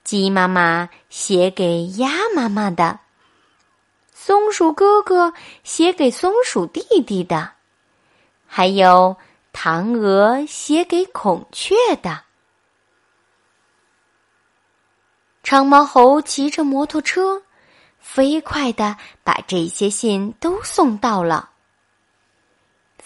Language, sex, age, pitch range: Chinese, female, 30-49, 195-325 Hz